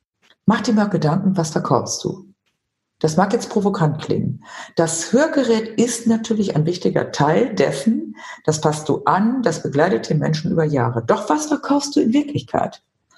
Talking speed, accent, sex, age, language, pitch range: 165 wpm, German, female, 50-69, German, 160-220 Hz